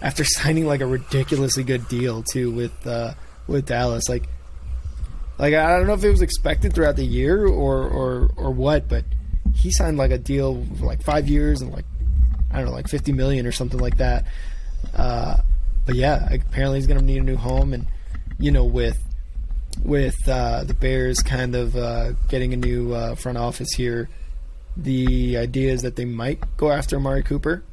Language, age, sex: English, 20-39, male